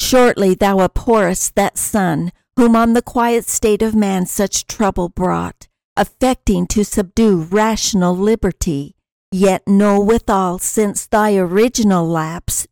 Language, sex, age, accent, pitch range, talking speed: English, female, 60-79, American, 180-220 Hz, 125 wpm